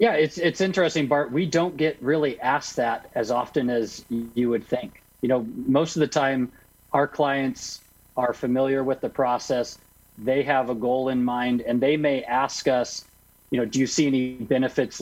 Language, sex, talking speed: English, male, 190 wpm